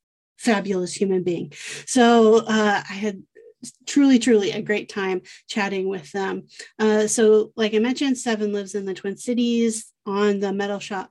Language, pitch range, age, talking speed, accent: English, 200-235 Hz, 30-49, 160 wpm, American